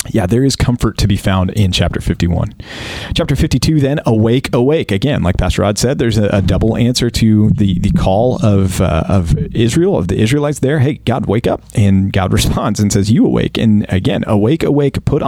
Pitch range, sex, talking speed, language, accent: 100-120 Hz, male, 210 wpm, English, American